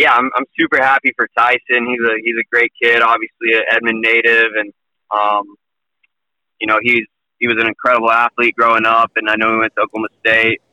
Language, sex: English, male